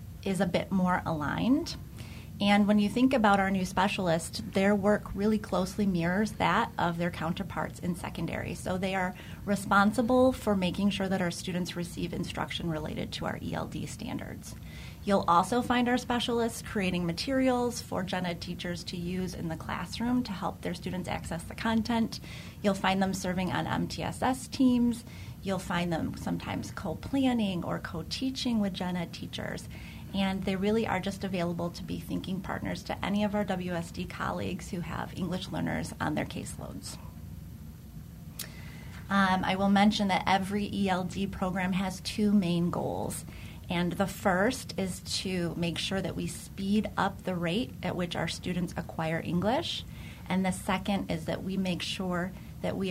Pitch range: 180-210 Hz